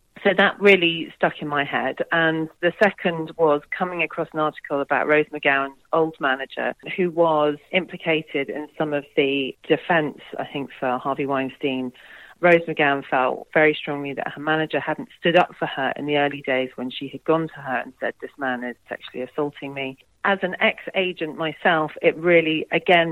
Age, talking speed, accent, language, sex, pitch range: 40-59, 185 wpm, British, English, female, 140-165 Hz